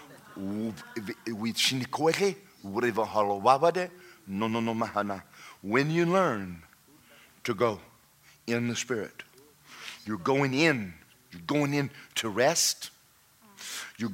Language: English